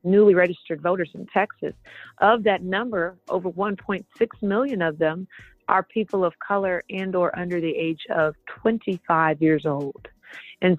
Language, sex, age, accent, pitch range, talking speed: English, female, 40-59, American, 160-195 Hz, 150 wpm